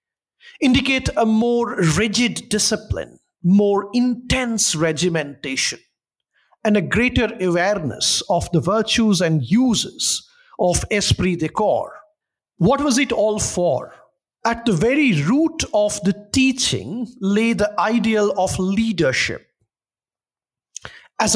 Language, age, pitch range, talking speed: English, 50-69, 180-235 Hz, 110 wpm